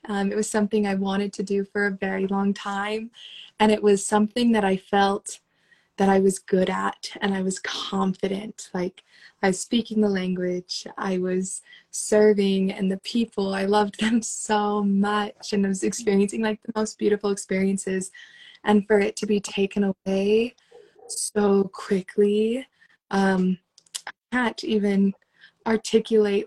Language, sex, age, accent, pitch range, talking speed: English, female, 20-39, American, 190-215 Hz, 155 wpm